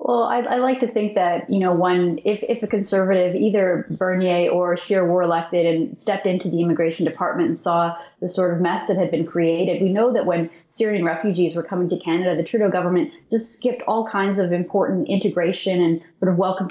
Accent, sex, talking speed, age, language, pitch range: American, female, 215 wpm, 30-49, English, 170-205 Hz